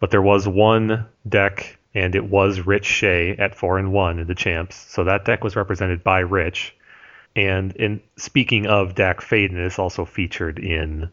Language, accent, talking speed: English, American, 180 wpm